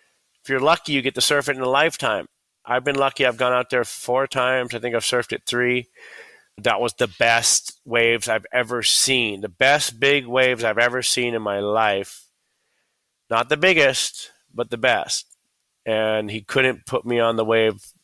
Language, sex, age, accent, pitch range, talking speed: English, male, 30-49, American, 110-130 Hz, 195 wpm